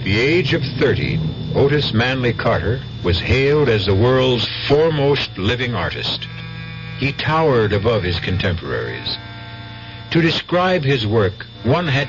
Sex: male